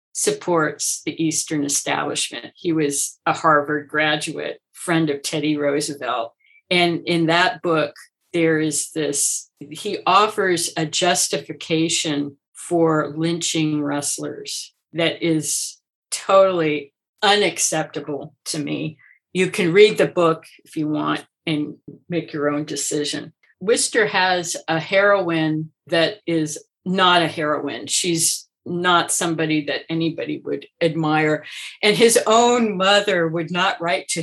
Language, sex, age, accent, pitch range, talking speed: English, female, 50-69, American, 155-185 Hz, 125 wpm